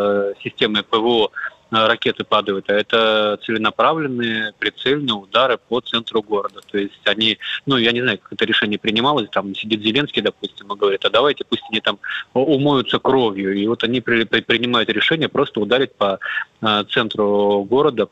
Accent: native